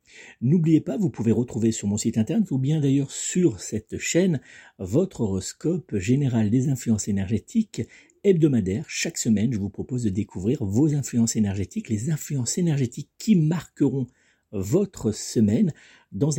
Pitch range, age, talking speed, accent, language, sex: 105-140 Hz, 50-69, 145 wpm, French, French, male